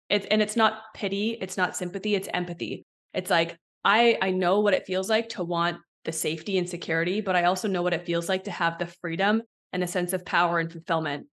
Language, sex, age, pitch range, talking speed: English, female, 20-39, 170-195 Hz, 235 wpm